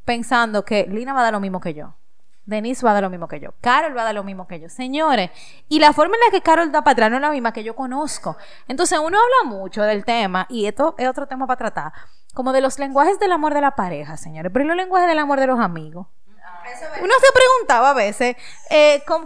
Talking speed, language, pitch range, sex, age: 255 wpm, Spanish, 215-300 Hz, female, 20-39